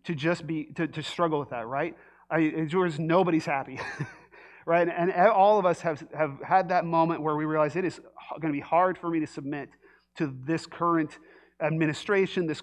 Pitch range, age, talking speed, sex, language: 145-195 Hz, 30-49, 195 wpm, male, English